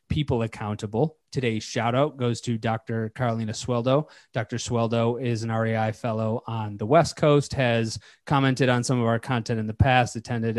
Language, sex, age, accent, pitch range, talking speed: English, male, 30-49, American, 115-130 Hz, 175 wpm